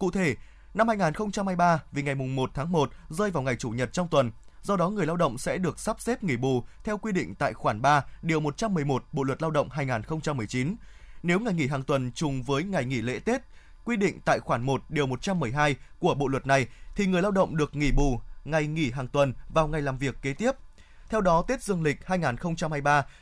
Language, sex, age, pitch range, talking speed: Vietnamese, male, 20-39, 140-180 Hz, 220 wpm